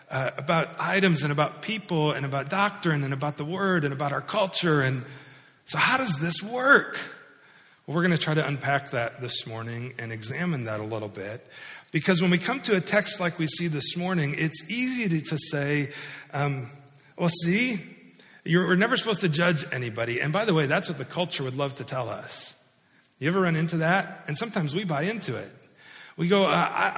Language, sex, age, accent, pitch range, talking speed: English, male, 40-59, American, 145-195 Hz, 210 wpm